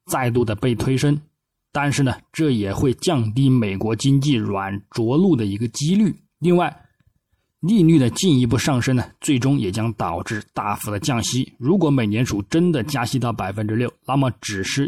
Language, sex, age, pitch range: Chinese, male, 20-39, 105-140 Hz